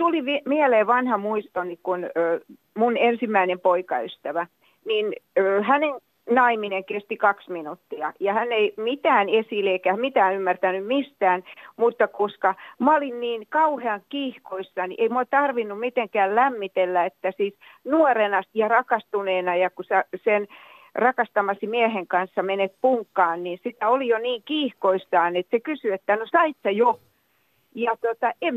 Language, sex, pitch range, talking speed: Finnish, female, 190-255 Hz, 135 wpm